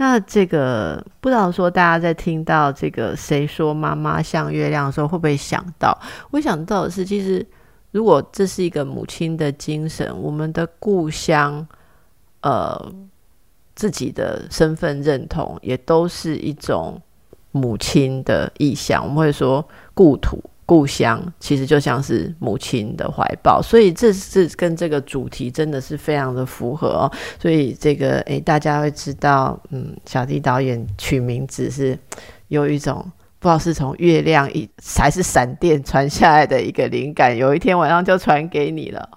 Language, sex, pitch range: Chinese, female, 140-170 Hz